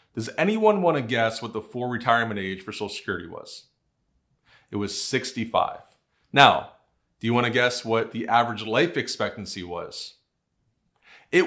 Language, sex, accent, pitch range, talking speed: English, male, American, 115-160 Hz, 155 wpm